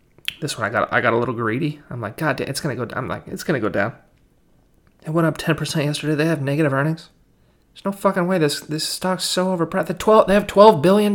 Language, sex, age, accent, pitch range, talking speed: English, male, 30-49, American, 135-190 Hz, 260 wpm